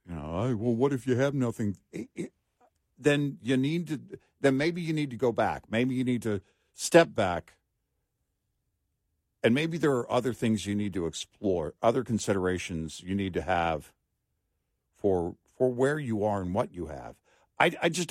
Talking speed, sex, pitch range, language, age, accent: 185 wpm, male, 95-125 Hz, English, 60-79, American